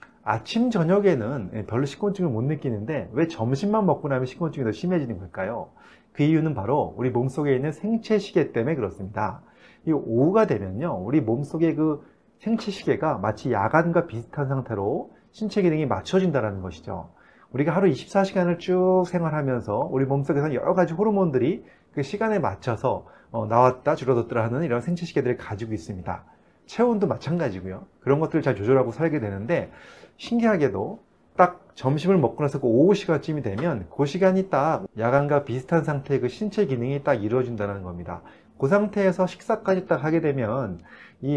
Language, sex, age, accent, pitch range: Korean, male, 30-49, native, 120-180 Hz